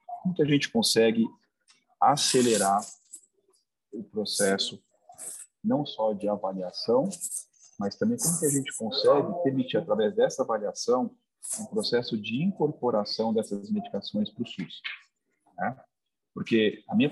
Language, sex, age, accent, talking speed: Portuguese, male, 40-59, Brazilian, 125 wpm